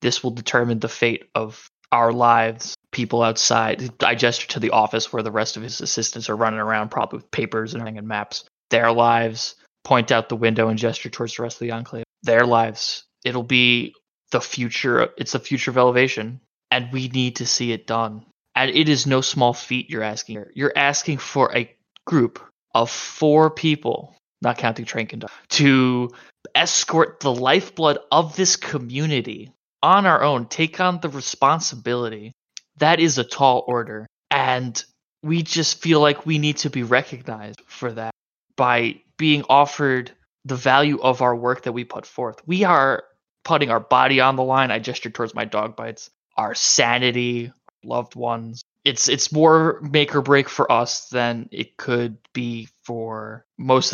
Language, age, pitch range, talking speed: English, 20-39, 115-135 Hz, 175 wpm